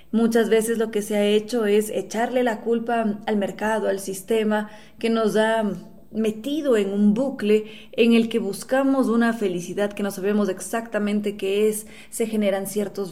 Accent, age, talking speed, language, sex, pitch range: Mexican, 20-39, 170 wpm, Spanish, female, 205-240 Hz